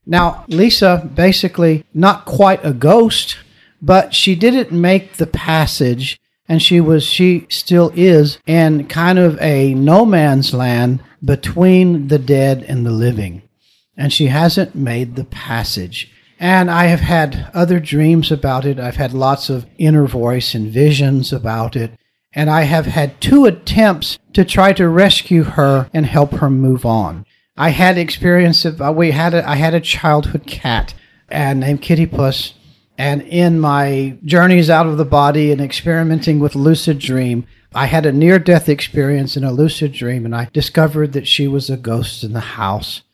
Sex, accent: male, American